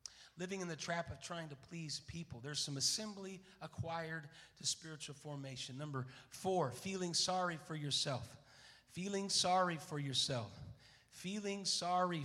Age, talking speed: 40-59, 135 wpm